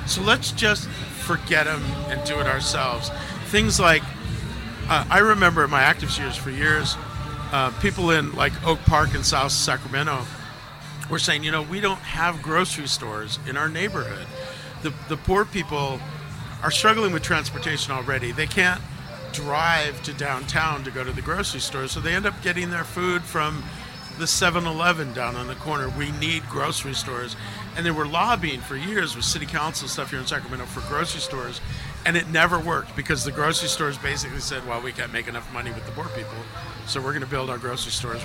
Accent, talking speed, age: American, 195 wpm, 50-69